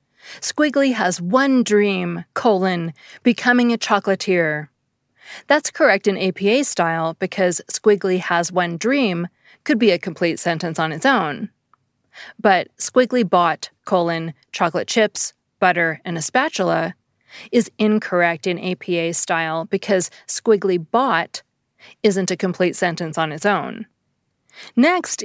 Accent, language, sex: American, English, female